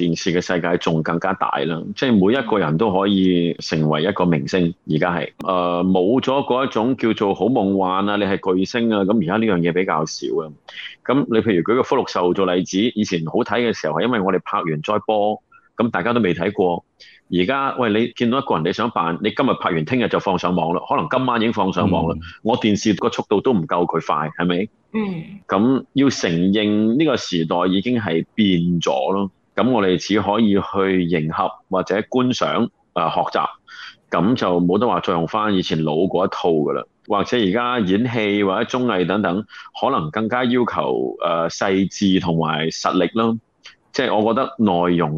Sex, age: male, 30-49